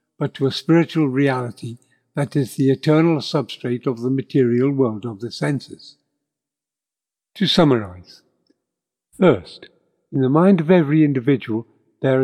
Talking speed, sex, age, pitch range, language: 130 wpm, male, 60-79, 125-150 Hz, English